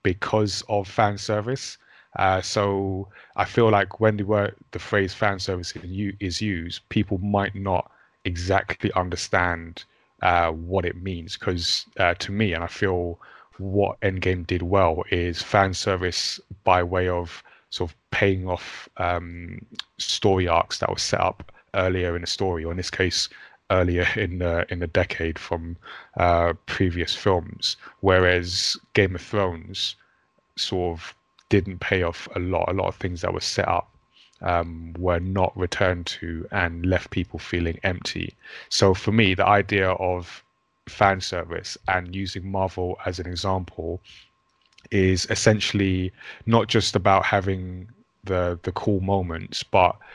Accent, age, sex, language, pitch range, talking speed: British, 20-39, male, English, 90-100 Hz, 150 wpm